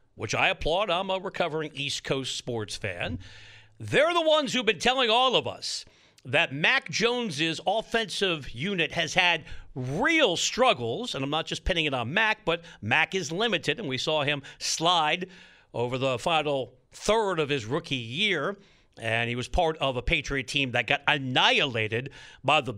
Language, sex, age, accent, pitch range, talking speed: English, male, 50-69, American, 135-215 Hz, 175 wpm